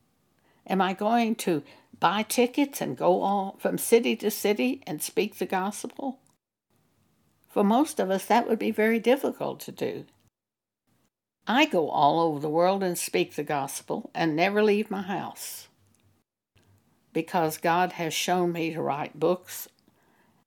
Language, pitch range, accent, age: English, 160-220 Hz, American, 60-79